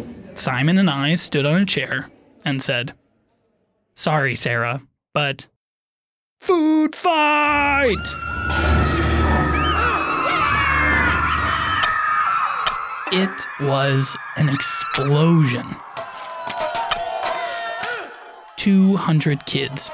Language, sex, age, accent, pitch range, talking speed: Italian, male, 20-39, American, 135-190 Hz, 60 wpm